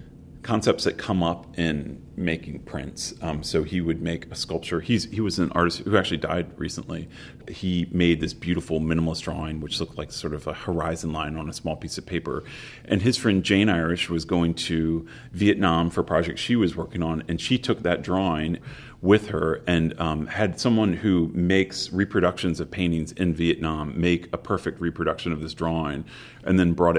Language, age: English, 40-59